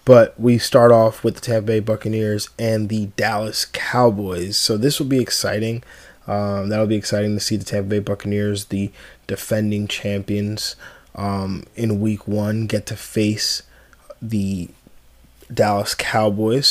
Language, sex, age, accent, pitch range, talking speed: English, male, 20-39, American, 105-115 Hz, 145 wpm